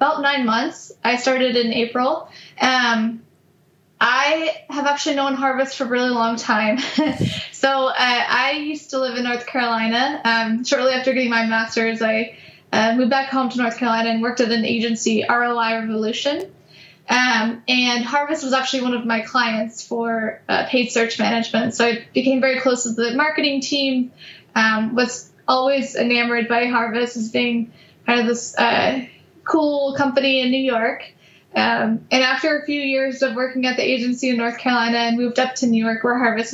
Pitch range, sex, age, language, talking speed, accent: 230-265 Hz, female, 10-29, English, 180 wpm, American